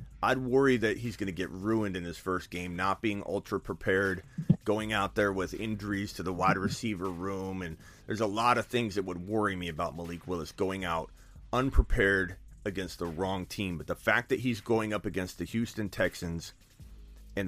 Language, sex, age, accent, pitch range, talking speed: English, male, 30-49, American, 95-125 Hz, 200 wpm